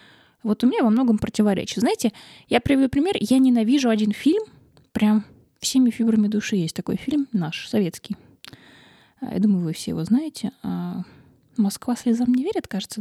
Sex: female